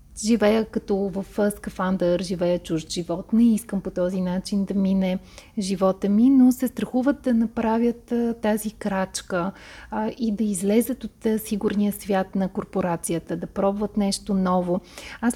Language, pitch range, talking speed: Bulgarian, 195-235 Hz, 150 wpm